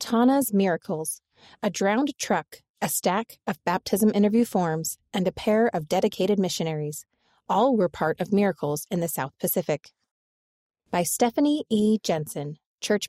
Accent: American